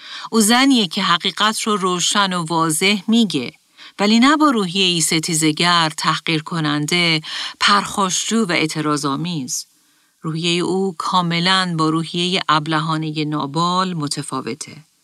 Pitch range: 160-205 Hz